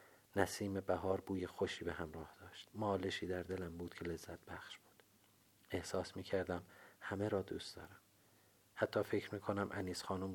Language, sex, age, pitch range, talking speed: Persian, male, 40-59, 90-100 Hz, 150 wpm